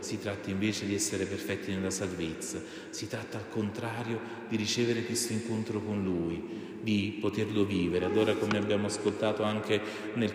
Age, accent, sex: 30-49, native, male